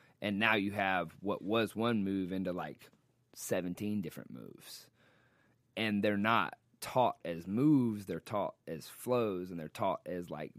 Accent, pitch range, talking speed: American, 90-120 Hz, 160 wpm